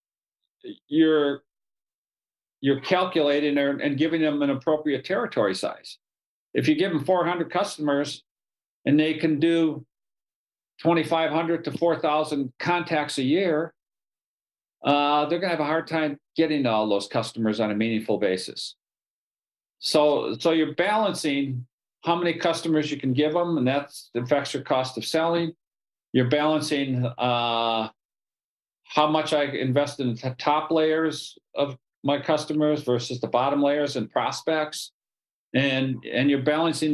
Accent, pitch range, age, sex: American, 130-160 Hz, 50-69, male